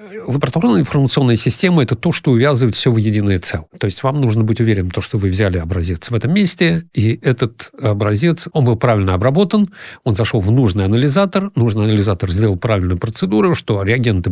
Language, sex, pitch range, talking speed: Russian, male, 95-120 Hz, 190 wpm